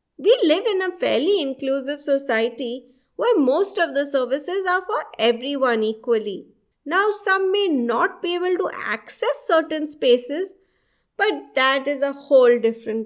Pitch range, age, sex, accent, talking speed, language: 250-345 Hz, 30-49, female, Indian, 145 wpm, English